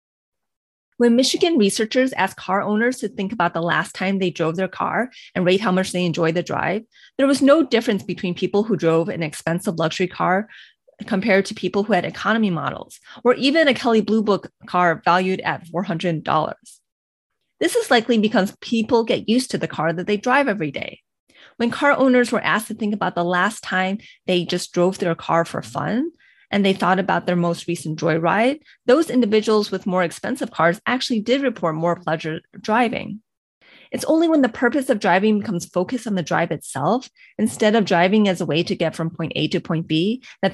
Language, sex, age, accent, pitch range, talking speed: English, female, 30-49, American, 175-235 Hz, 200 wpm